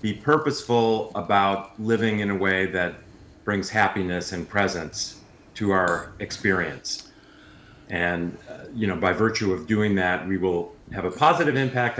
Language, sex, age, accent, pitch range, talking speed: English, male, 40-59, American, 100-120 Hz, 150 wpm